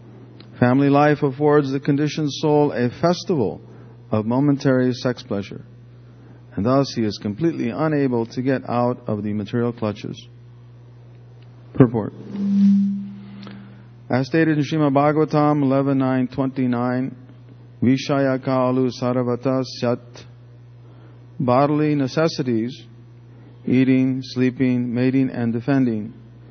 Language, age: English, 50-69